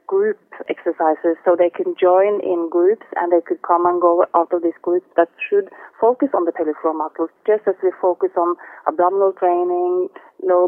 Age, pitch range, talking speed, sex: 30-49, 170-230 Hz, 190 wpm, female